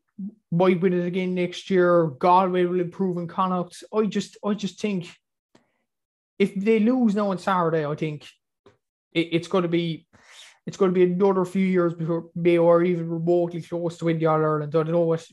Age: 20-39